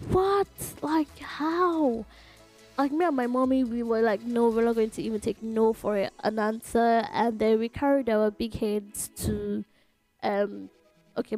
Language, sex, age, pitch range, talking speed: English, female, 10-29, 200-240 Hz, 170 wpm